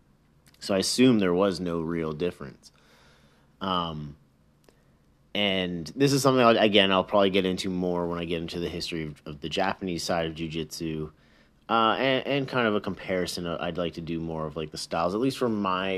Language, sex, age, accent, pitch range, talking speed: English, male, 30-49, American, 80-100 Hz, 200 wpm